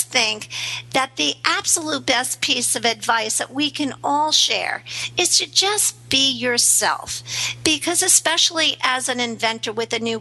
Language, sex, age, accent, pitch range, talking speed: English, female, 50-69, American, 230-290 Hz, 155 wpm